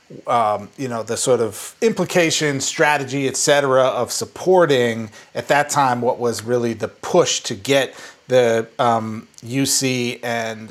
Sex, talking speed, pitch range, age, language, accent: male, 140 wpm, 120-160 Hz, 30-49, English, American